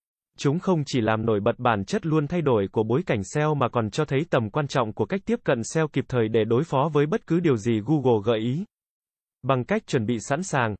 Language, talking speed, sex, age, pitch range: Vietnamese, 255 wpm, male, 20-39, 115-155 Hz